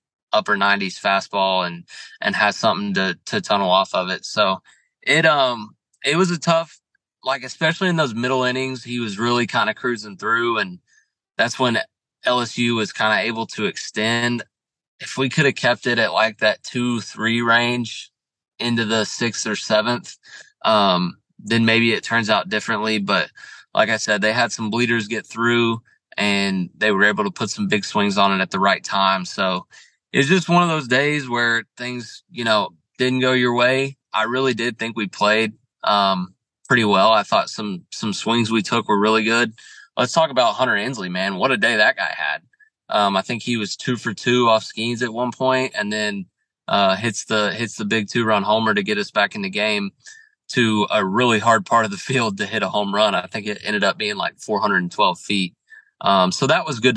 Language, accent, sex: English, American, male